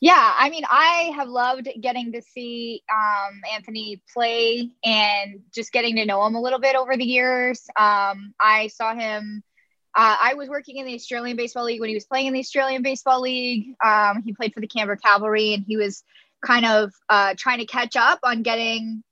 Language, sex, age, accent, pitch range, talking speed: English, female, 20-39, American, 215-260 Hz, 205 wpm